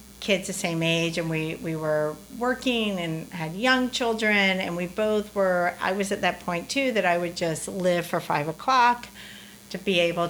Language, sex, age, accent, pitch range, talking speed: English, female, 50-69, American, 175-235 Hz, 200 wpm